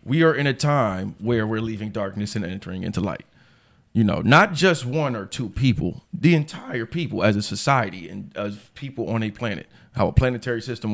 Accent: American